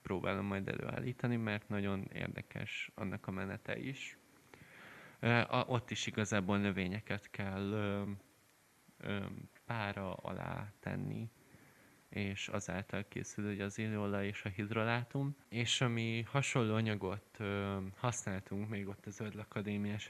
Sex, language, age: male, Hungarian, 20-39